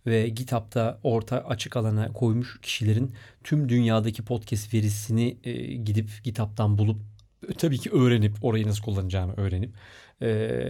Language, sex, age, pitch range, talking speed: Turkish, male, 40-59, 110-130 Hz, 125 wpm